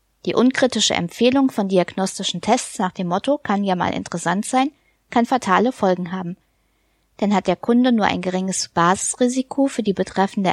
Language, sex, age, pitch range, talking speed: German, female, 20-39, 185-240 Hz, 165 wpm